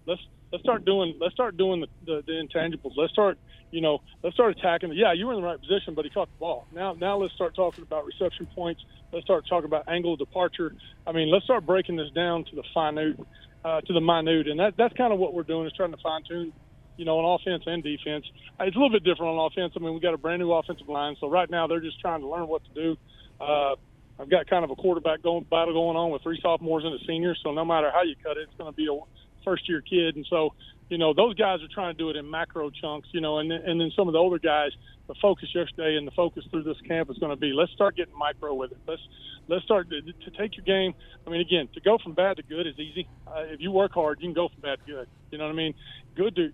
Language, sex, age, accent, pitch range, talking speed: English, male, 30-49, American, 150-175 Hz, 280 wpm